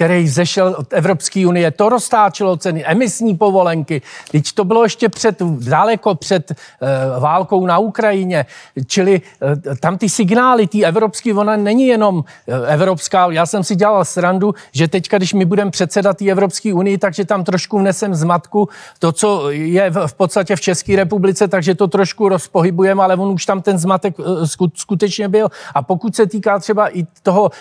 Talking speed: 165 wpm